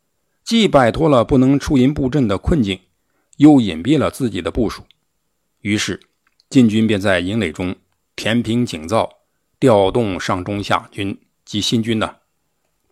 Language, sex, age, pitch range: Chinese, male, 60-79, 100-135 Hz